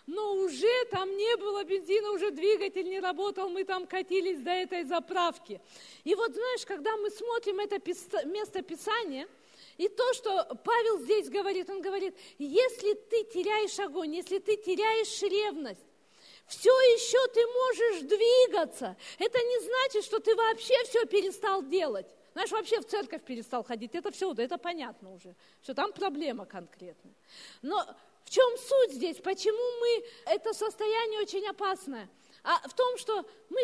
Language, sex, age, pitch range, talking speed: Russian, female, 40-59, 325-440 Hz, 150 wpm